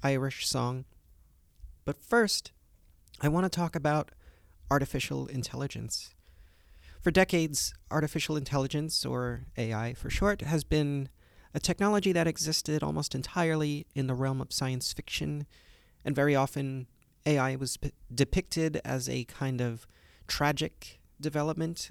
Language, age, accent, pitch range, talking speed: English, 30-49, American, 115-150 Hz, 125 wpm